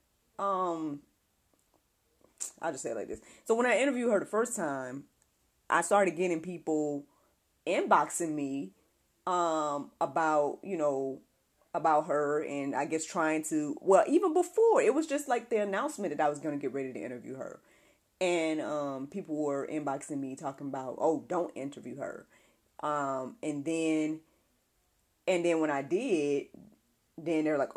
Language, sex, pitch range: English, female, 140-185 Hz